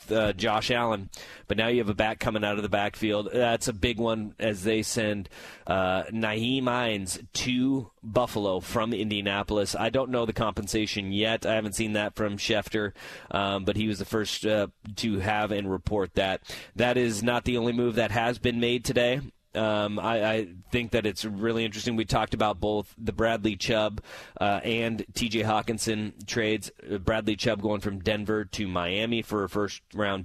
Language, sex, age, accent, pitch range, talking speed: English, male, 30-49, American, 100-115 Hz, 185 wpm